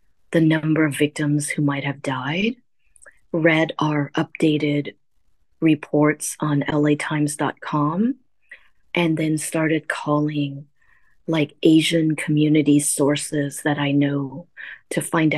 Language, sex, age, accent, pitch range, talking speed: English, female, 30-49, American, 145-165 Hz, 105 wpm